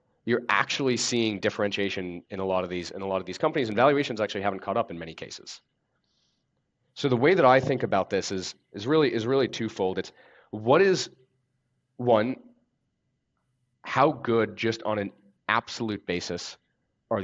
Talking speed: 175 wpm